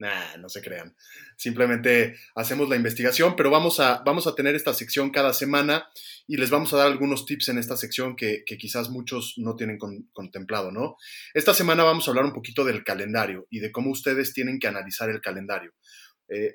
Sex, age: male, 30-49